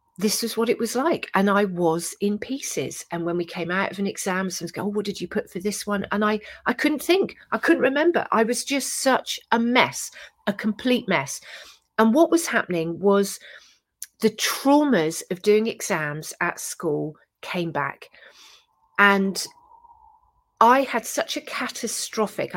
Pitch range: 170-230 Hz